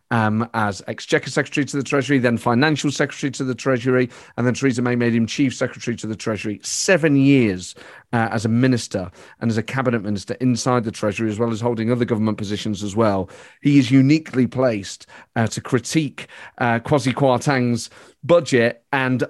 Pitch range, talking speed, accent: 115-140 Hz, 185 wpm, British